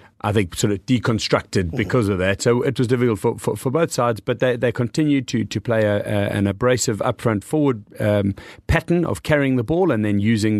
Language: English